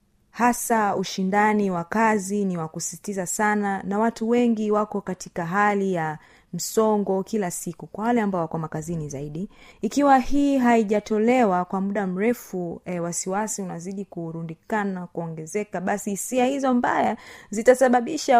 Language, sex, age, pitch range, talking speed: Swahili, female, 30-49, 185-245 Hz, 125 wpm